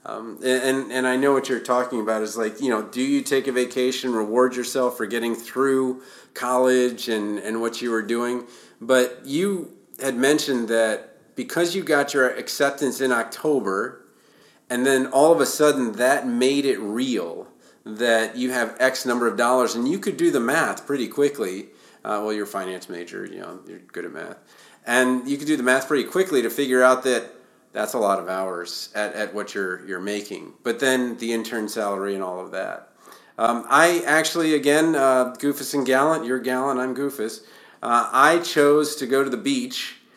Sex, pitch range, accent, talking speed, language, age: male, 115-140 Hz, American, 195 wpm, English, 40-59